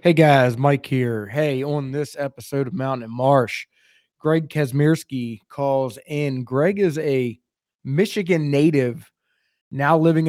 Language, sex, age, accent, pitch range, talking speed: English, male, 20-39, American, 140-165 Hz, 135 wpm